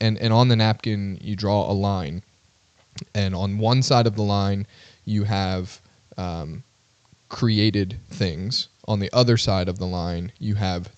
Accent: American